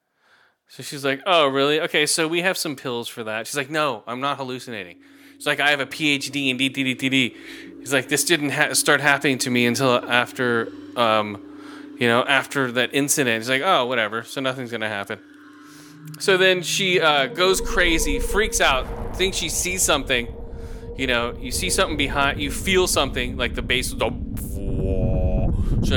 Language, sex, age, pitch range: English, male, 20-39, 120-150 Hz